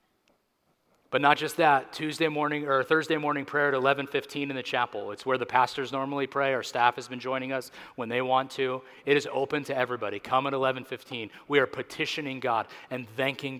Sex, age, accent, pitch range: male, 30-49, American, 120-140 Hz